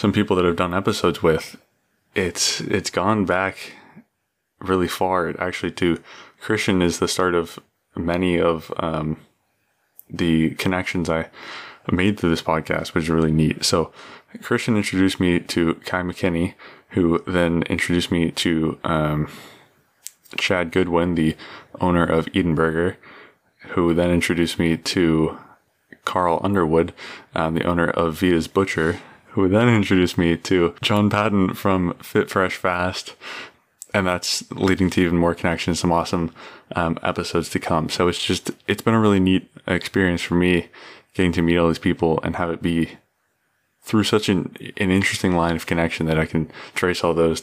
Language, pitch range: English, 80-95 Hz